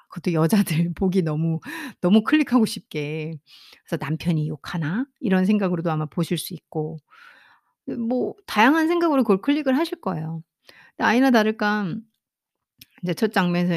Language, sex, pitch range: Korean, female, 160-215 Hz